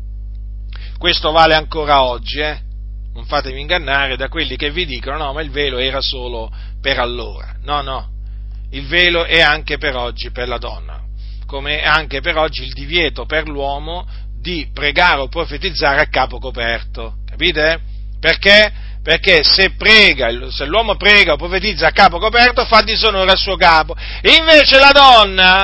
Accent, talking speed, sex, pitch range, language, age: native, 160 wpm, male, 115-175 Hz, Italian, 40-59